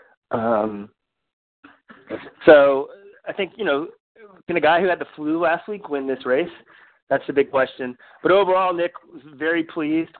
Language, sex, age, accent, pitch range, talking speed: English, male, 30-49, American, 120-150 Hz, 165 wpm